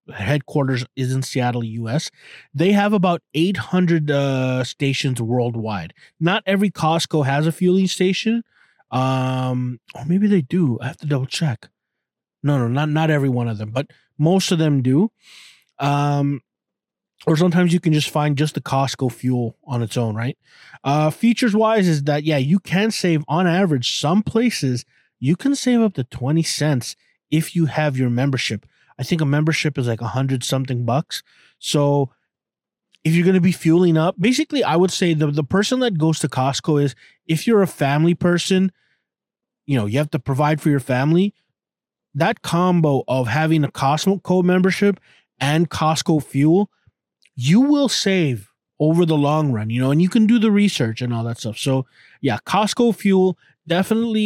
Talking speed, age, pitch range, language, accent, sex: 180 wpm, 20-39, 135-180 Hz, English, American, male